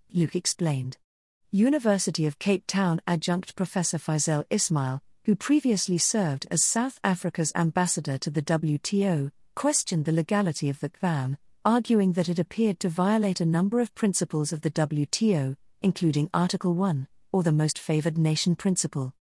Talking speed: 150 wpm